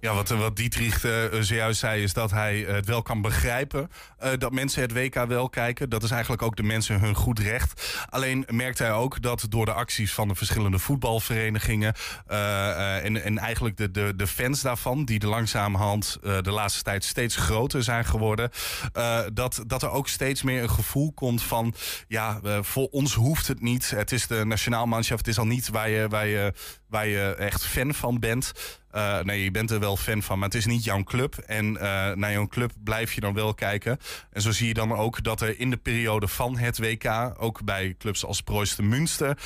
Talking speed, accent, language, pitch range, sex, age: 220 wpm, Dutch, Dutch, 105-125 Hz, male, 20-39